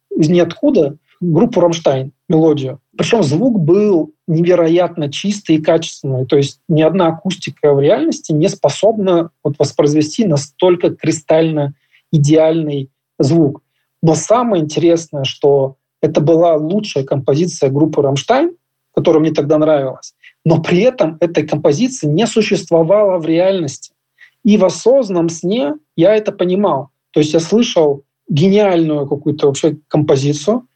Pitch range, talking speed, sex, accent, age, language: 150-185 Hz, 125 wpm, male, native, 20-39, Russian